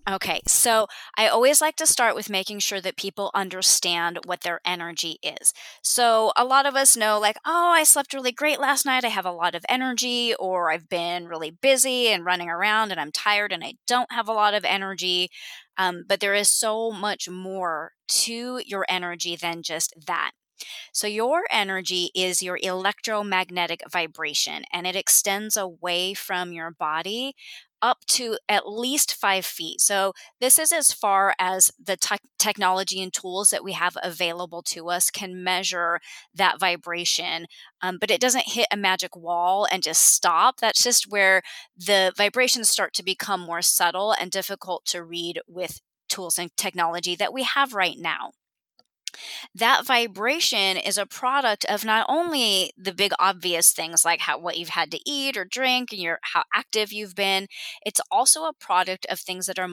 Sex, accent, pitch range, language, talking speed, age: female, American, 175-225 Hz, English, 180 wpm, 20-39